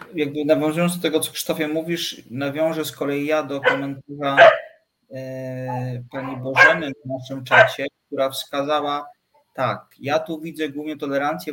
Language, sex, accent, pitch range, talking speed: Polish, male, native, 130-150 Hz, 140 wpm